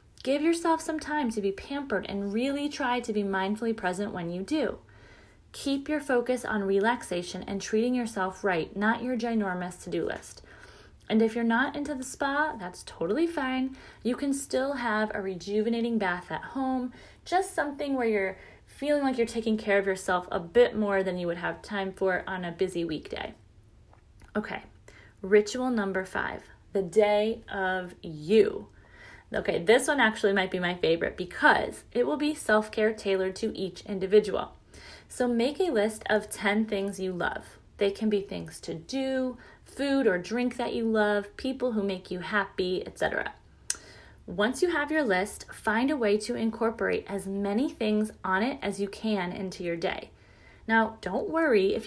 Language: English